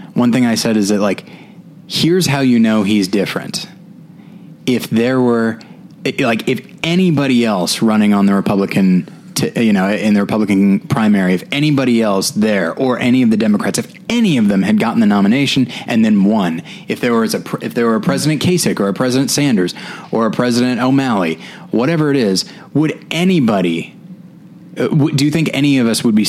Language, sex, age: English, male, 20-39